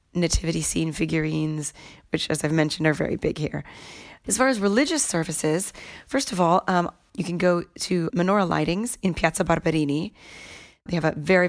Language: English